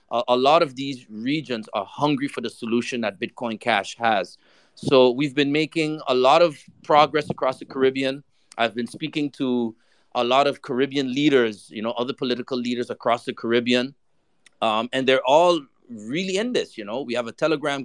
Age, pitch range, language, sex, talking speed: 30-49, 120-145 Hz, English, male, 185 wpm